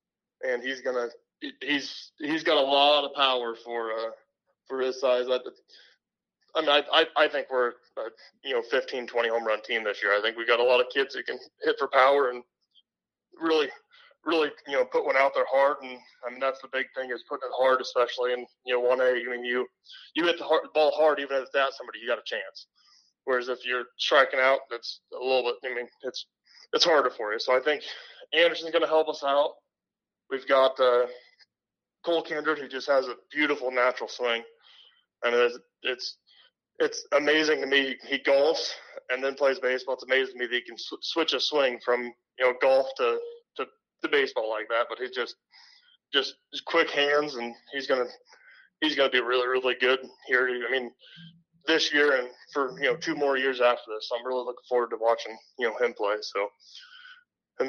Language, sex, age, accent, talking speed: English, male, 20-39, American, 210 wpm